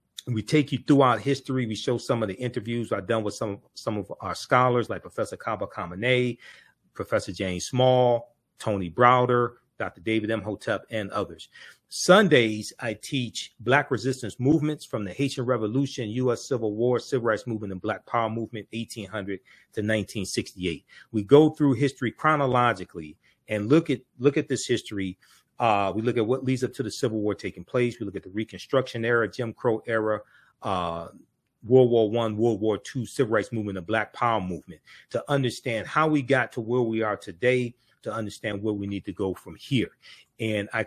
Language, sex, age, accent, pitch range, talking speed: English, male, 40-59, American, 105-130 Hz, 190 wpm